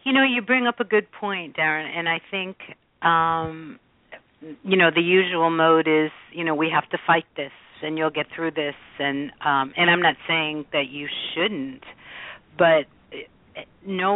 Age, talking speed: 50-69, 180 wpm